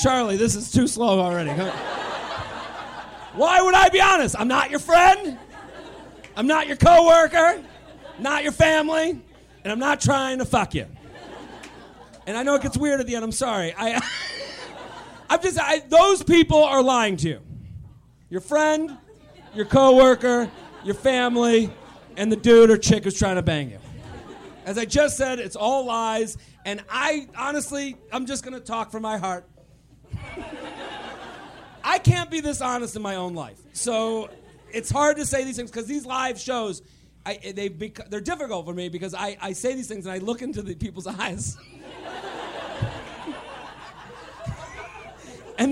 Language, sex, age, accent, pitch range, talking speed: English, male, 30-49, American, 205-285 Hz, 160 wpm